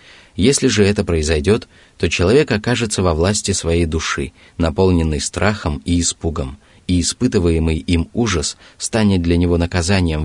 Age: 30-49